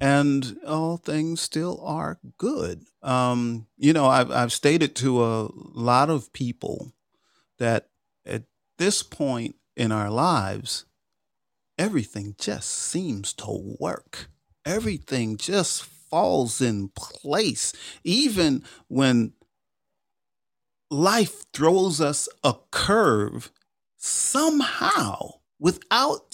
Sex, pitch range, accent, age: male, 120-170 Hz, American, 40-59